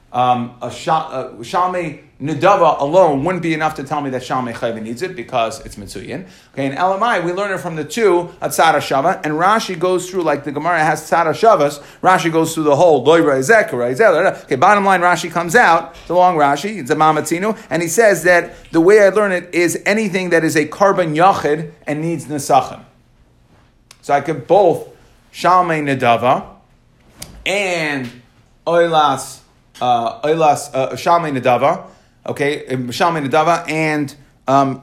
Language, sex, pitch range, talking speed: English, male, 135-175 Hz, 155 wpm